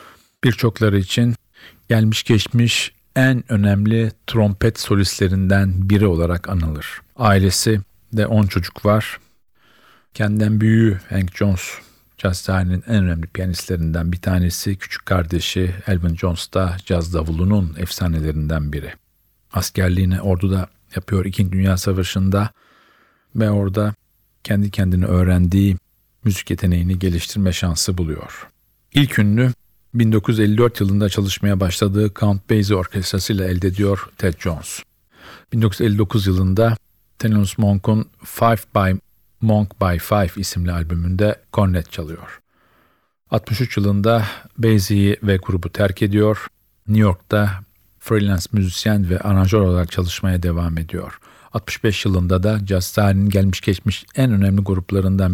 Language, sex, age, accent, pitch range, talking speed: Turkish, male, 50-69, native, 90-105 Hz, 115 wpm